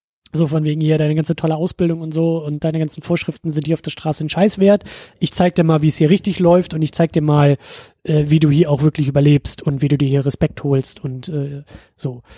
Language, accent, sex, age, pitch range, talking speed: German, German, male, 20-39, 160-200 Hz, 250 wpm